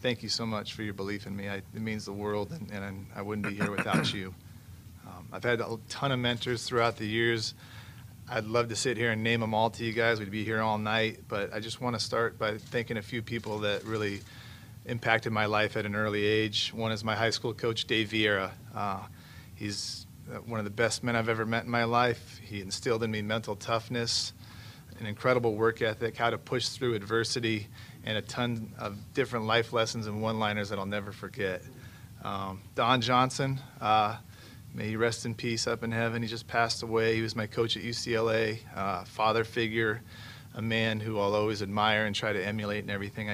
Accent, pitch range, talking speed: American, 105-115 Hz, 210 wpm